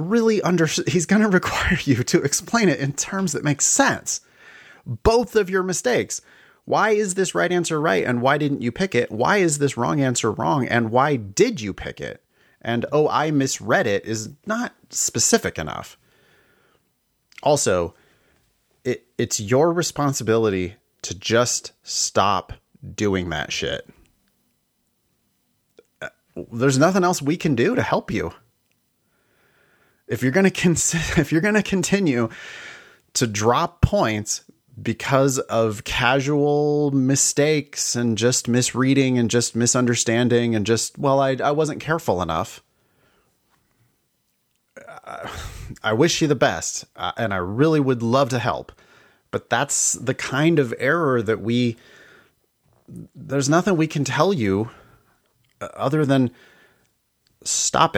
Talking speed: 135 wpm